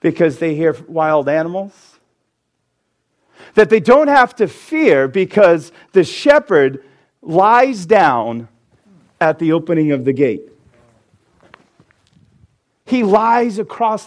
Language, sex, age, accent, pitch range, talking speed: English, male, 50-69, American, 110-180 Hz, 105 wpm